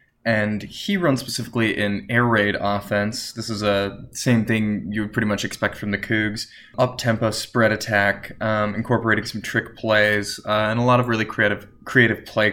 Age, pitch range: 20-39, 105-115 Hz